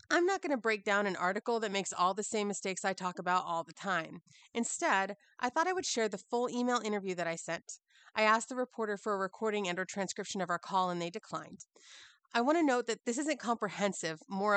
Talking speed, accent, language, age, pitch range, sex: 240 wpm, American, English, 30-49, 185-235 Hz, female